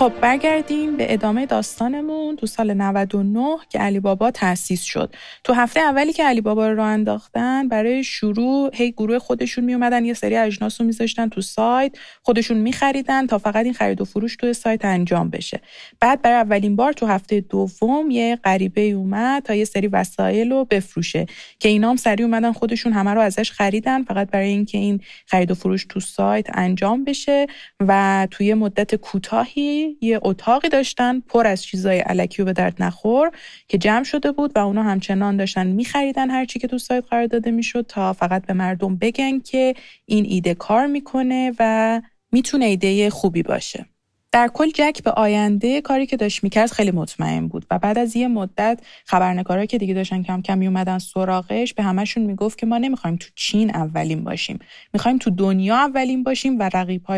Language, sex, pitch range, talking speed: Persian, female, 195-250 Hz, 185 wpm